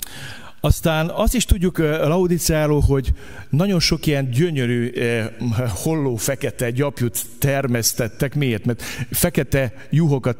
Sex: male